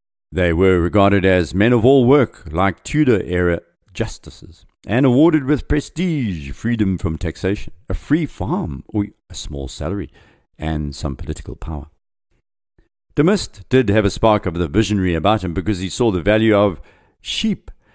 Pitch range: 80-110 Hz